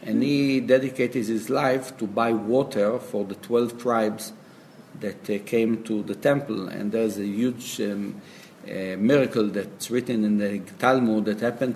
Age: 50-69